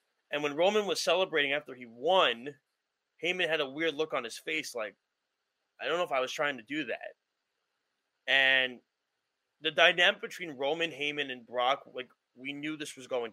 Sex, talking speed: male, 185 wpm